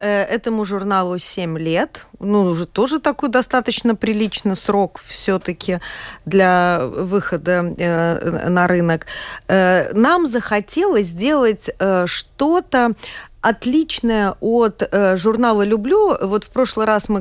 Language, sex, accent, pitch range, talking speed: Russian, female, native, 180-250 Hz, 110 wpm